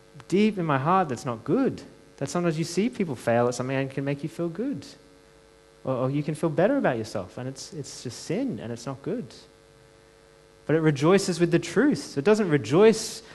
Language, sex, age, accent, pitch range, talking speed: English, male, 30-49, Australian, 120-170 Hz, 210 wpm